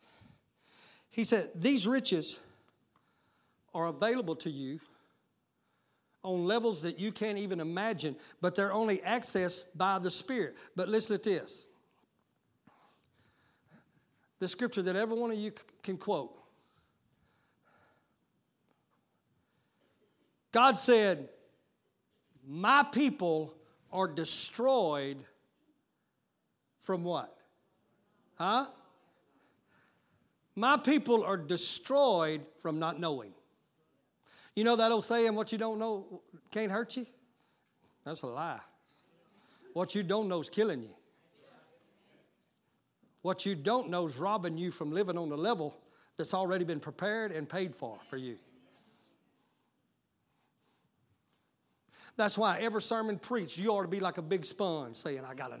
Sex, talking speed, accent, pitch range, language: male, 120 wpm, American, 165-225 Hz, English